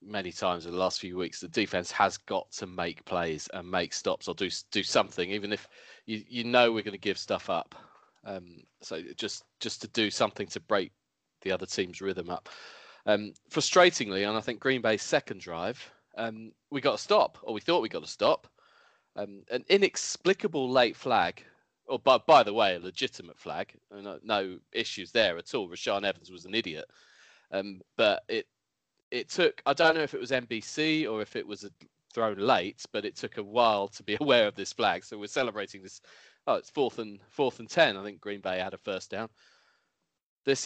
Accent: British